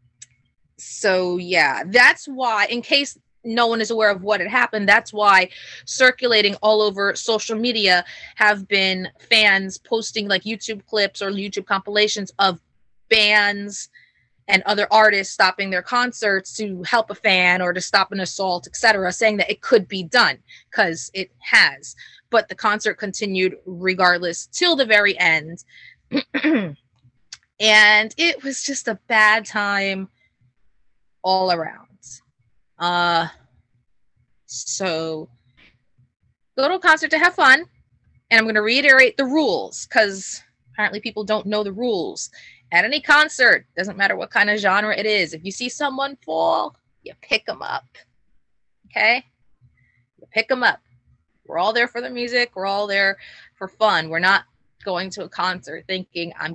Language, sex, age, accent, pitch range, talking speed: English, female, 20-39, American, 180-225 Hz, 150 wpm